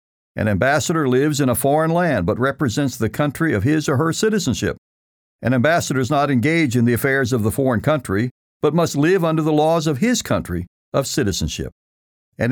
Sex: male